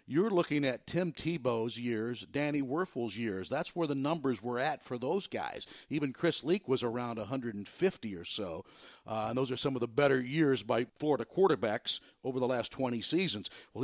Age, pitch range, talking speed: 50-69, 120-145 Hz, 190 wpm